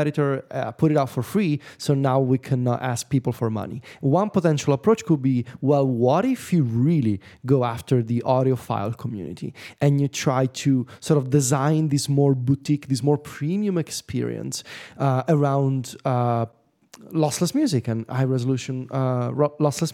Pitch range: 130-180 Hz